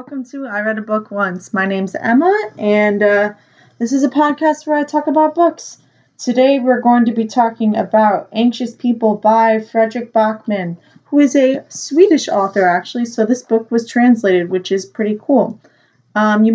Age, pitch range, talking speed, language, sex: 20-39, 205-245 Hz, 180 wpm, English, female